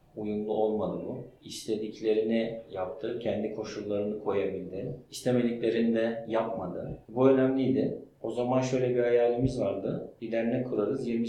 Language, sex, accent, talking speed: Turkish, male, native, 120 wpm